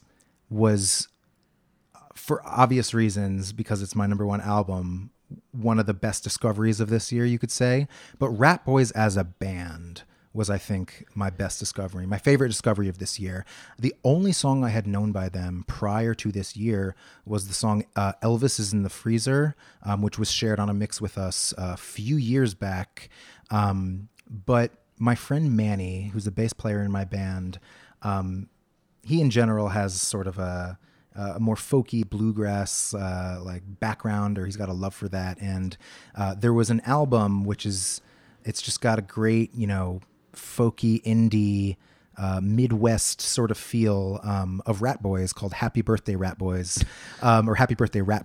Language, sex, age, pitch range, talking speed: English, male, 30-49, 95-115 Hz, 180 wpm